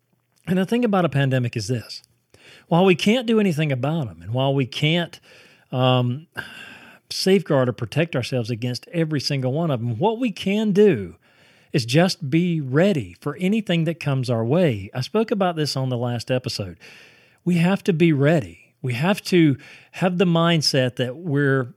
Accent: American